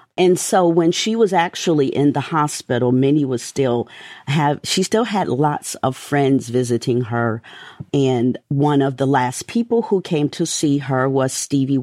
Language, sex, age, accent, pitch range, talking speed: English, female, 40-59, American, 120-145 Hz, 170 wpm